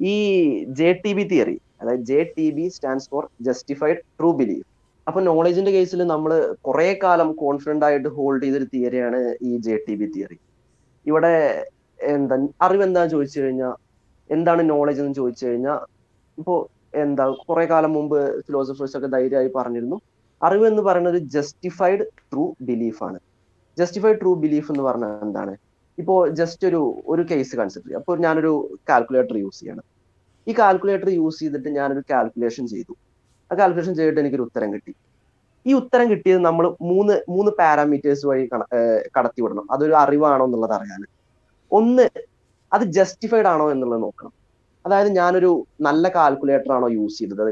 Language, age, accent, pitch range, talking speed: Malayalam, 20-39, native, 130-175 Hz, 145 wpm